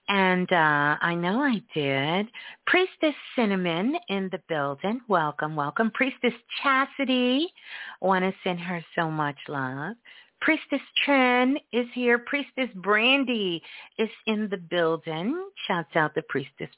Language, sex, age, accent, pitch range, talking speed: English, female, 40-59, American, 150-235 Hz, 125 wpm